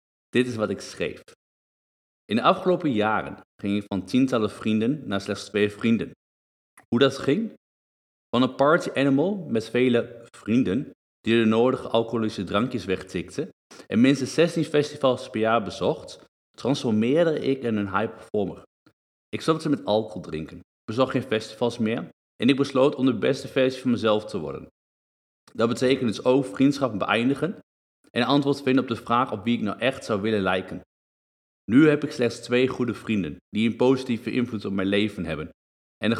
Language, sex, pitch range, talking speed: Dutch, male, 100-130 Hz, 170 wpm